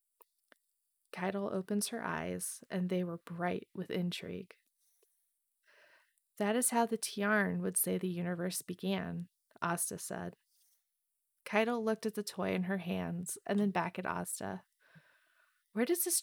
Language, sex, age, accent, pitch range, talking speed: English, female, 20-39, American, 175-210 Hz, 140 wpm